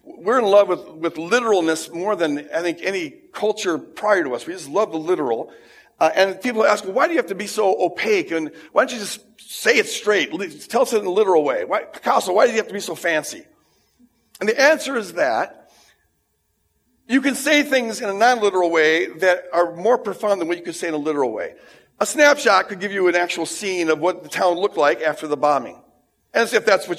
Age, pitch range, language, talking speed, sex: 50-69, 175-250 Hz, English, 235 wpm, male